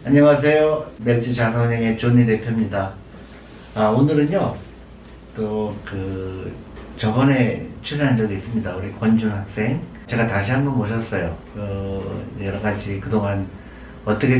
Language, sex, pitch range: Korean, male, 100-125 Hz